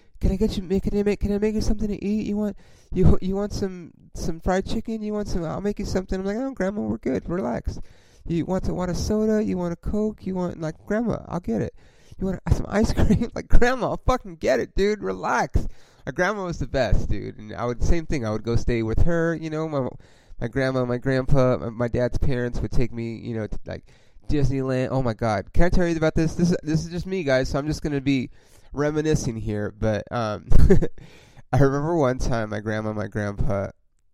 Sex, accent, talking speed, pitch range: male, American, 240 wpm, 105-170 Hz